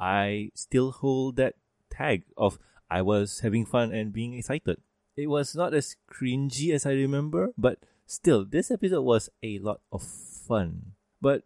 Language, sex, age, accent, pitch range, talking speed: English, male, 20-39, Malaysian, 105-140 Hz, 160 wpm